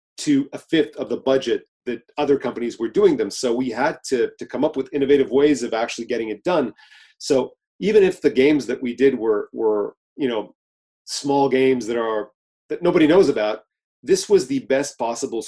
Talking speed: 200 wpm